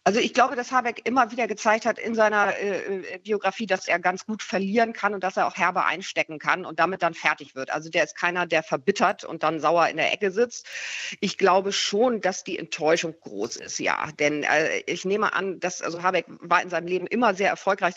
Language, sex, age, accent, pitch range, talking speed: German, female, 40-59, German, 155-190 Hz, 225 wpm